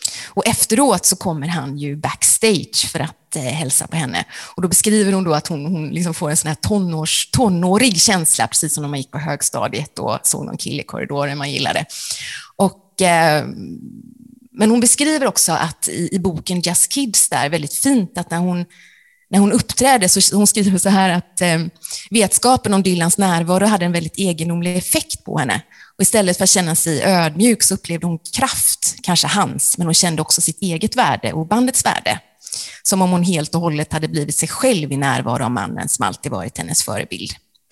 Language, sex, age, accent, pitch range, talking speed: Swedish, female, 30-49, native, 160-195 Hz, 195 wpm